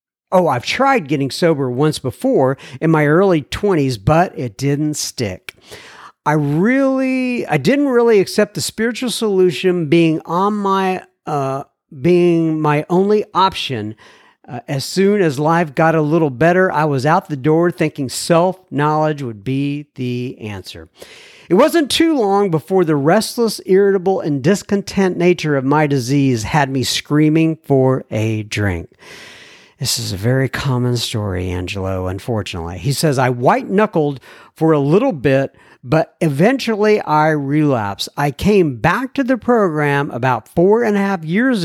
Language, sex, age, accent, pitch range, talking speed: English, male, 50-69, American, 135-190 Hz, 150 wpm